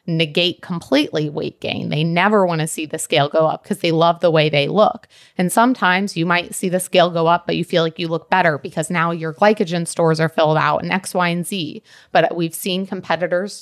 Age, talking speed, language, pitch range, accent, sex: 30-49, 230 wpm, English, 160-185 Hz, American, female